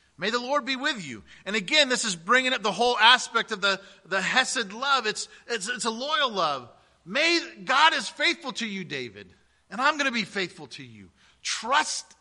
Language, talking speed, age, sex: English, 205 wpm, 40-59, male